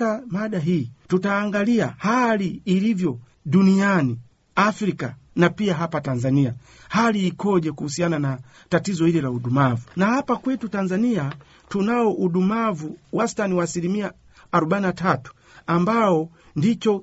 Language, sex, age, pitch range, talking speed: Swahili, male, 50-69, 155-220 Hz, 105 wpm